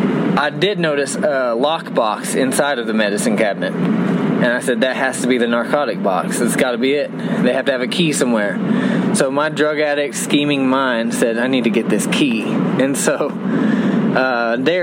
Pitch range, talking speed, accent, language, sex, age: 130-210 Hz, 210 wpm, American, English, male, 20-39